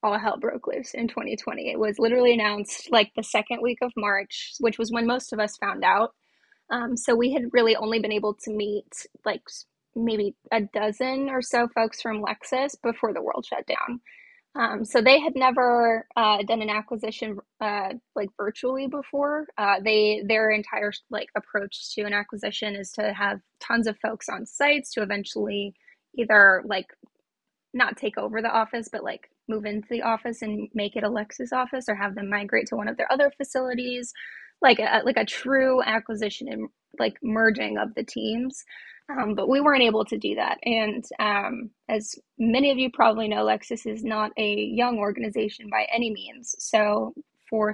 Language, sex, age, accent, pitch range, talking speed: English, female, 10-29, American, 210-250 Hz, 185 wpm